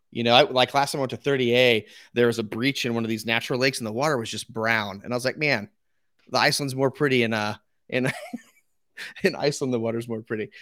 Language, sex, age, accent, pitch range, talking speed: English, male, 30-49, American, 115-165 Hz, 255 wpm